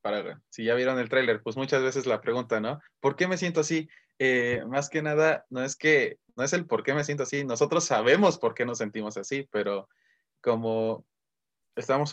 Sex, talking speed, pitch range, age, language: male, 210 wpm, 115-140 Hz, 20-39, Spanish